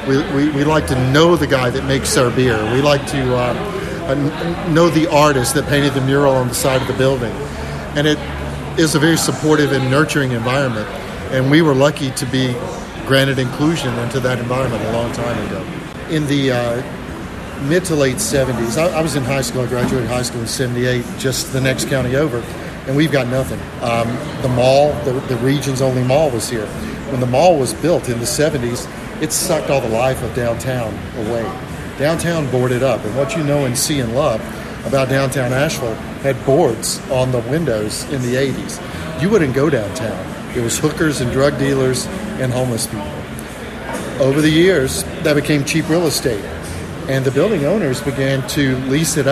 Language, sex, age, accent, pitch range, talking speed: English, male, 50-69, American, 125-150 Hz, 190 wpm